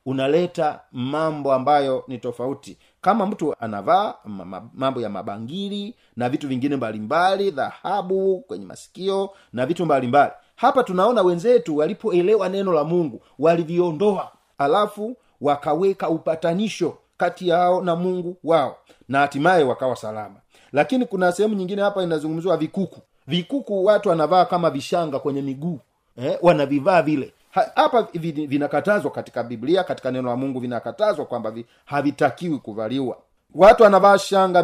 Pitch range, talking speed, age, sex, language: 130-180 Hz, 135 wpm, 40-59, male, Swahili